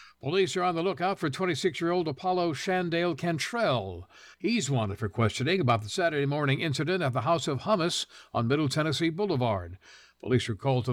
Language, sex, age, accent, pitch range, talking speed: English, male, 60-79, American, 125-165 Hz, 175 wpm